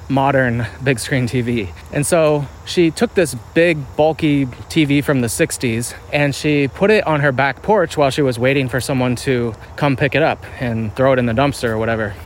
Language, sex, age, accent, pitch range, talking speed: English, male, 20-39, American, 115-150 Hz, 205 wpm